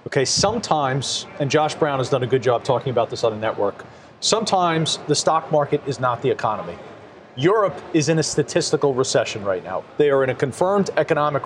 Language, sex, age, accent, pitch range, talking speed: English, male, 40-59, American, 140-185 Hz, 200 wpm